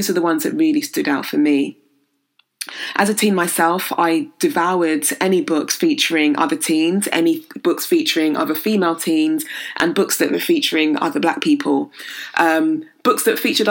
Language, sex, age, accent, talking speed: English, female, 20-39, British, 165 wpm